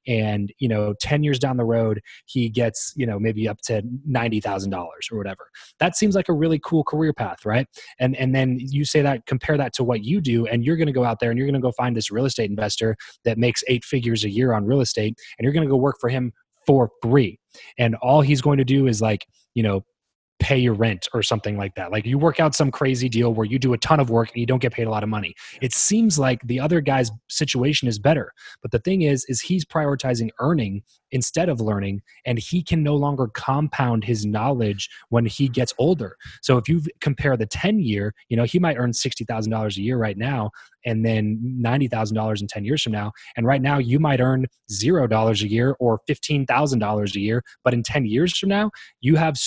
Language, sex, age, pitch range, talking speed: English, male, 20-39, 110-140 Hz, 230 wpm